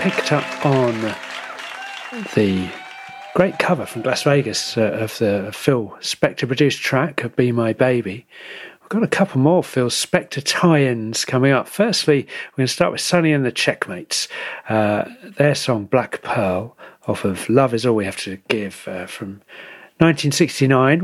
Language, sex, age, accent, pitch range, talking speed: English, male, 40-59, British, 120-155 Hz, 160 wpm